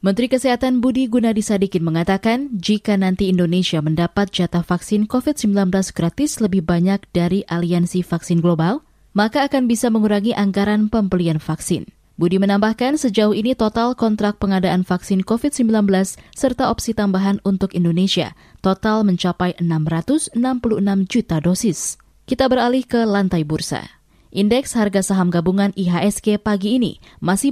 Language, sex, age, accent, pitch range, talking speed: Indonesian, female, 20-39, native, 180-230 Hz, 125 wpm